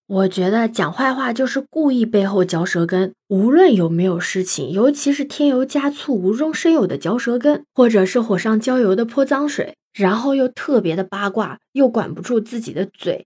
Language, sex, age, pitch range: Chinese, female, 20-39, 195-295 Hz